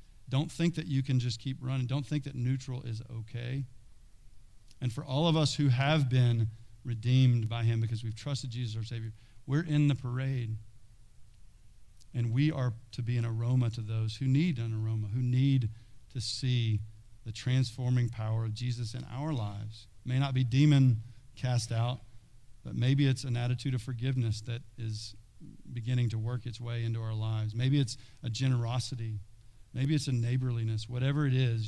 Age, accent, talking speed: 40-59, American, 180 wpm